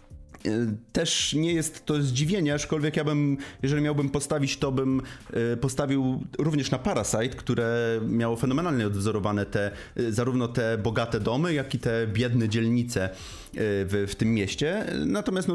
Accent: native